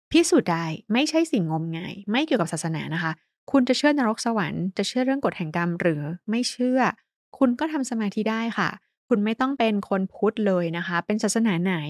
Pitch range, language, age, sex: 175-230 Hz, Thai, 20-39, female